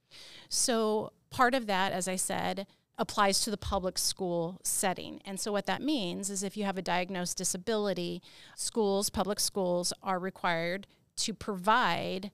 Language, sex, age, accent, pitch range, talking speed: English, female, 30-49, American, 190-230 Hz, 155 wpm